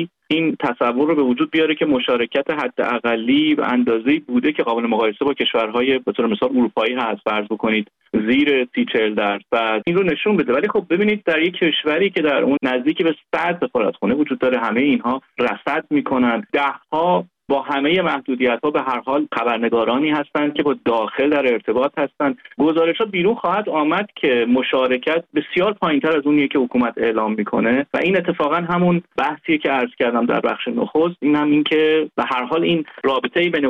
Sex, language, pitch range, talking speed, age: male, Persian, 120-165 Hz, 180 wpm, 30-49